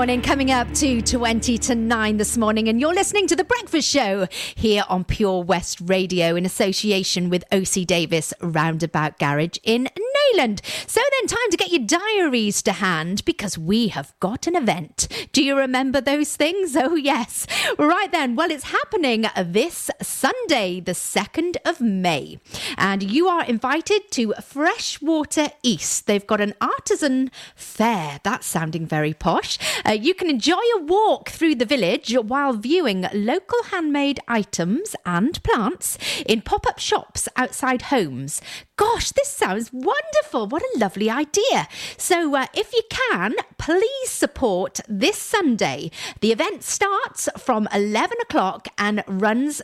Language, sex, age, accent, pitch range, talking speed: English, female, 40-59, British, 195-325 Hz, 150 wpm